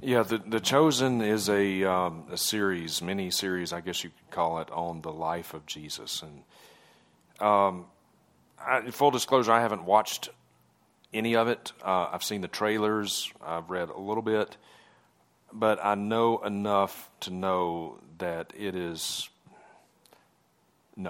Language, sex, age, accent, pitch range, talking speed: English, male, 40-59, American, 85-105 Hz, 150 wpm